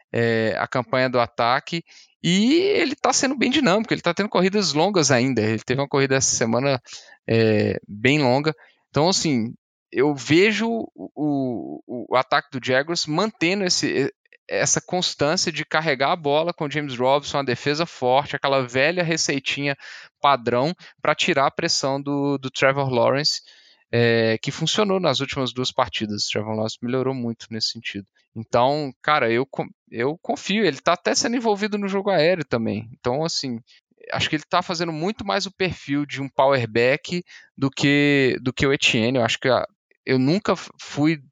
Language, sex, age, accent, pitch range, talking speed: Portuguese, male, 10-29, Brazilian, 120-165 Hz, 165 wpm